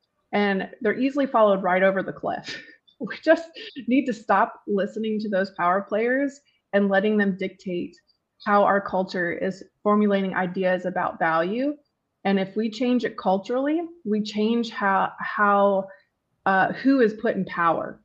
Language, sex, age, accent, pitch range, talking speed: English, female, 20-39, American, 185-215 Hz, 155 wpm